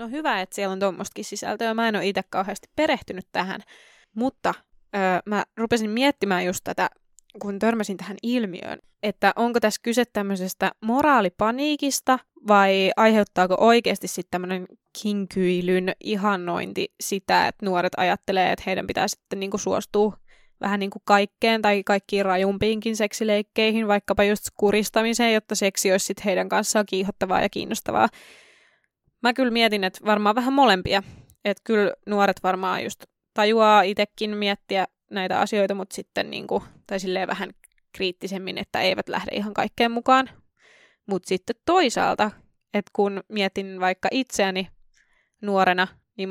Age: 20-39